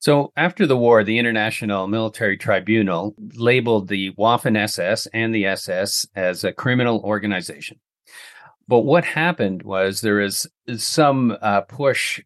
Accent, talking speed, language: American, 130 wpm, English